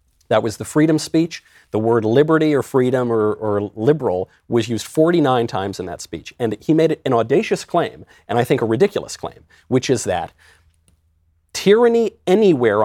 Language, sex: English, male